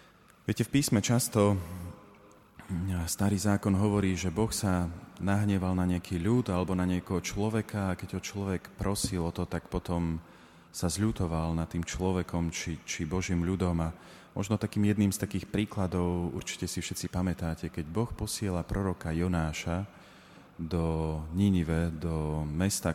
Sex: male